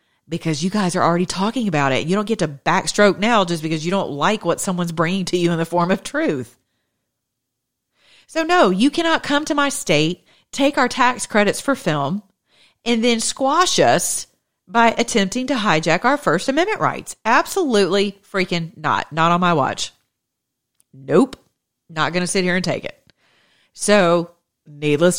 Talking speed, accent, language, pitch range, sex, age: 175 wpm, American, English, 160-225 Hz, female, 40-59